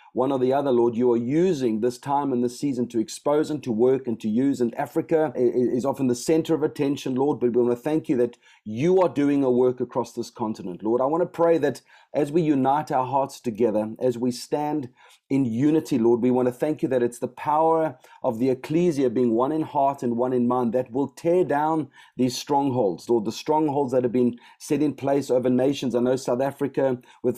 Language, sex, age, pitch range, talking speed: English, male, 30-49, 125-155 Hz, 230 wpm